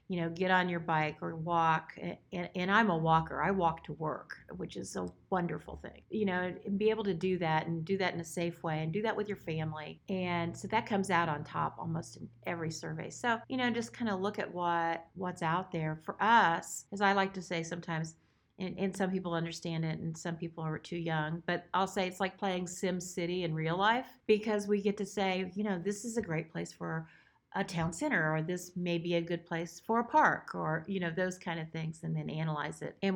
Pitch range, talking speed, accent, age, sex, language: 165-190 Hz, 240 wpm, American, 40-59, female, English